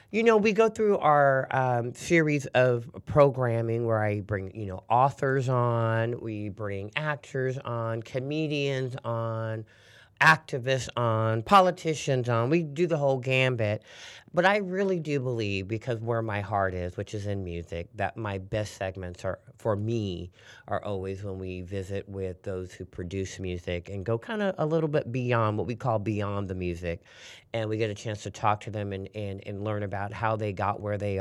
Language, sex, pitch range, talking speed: English, male, 100-130 Hz, 185 wpm